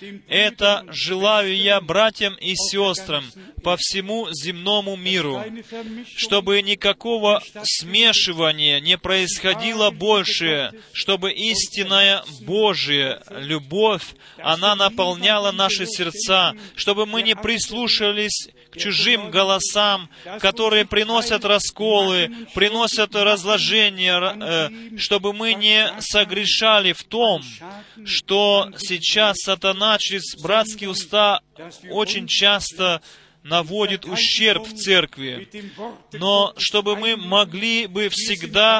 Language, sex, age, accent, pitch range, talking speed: Russian, male, 30-49, native, 185-215 Hz, 95 wpm